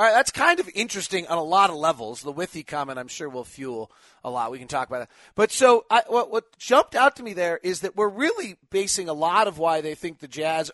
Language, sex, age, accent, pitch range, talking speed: English, male, 30-49, American, 150-205 Hz, 270 wpm